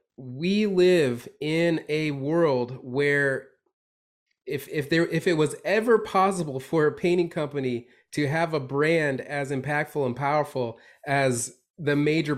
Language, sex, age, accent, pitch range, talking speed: English, male, 30-49, American, 135-185 Hz, 140 wpm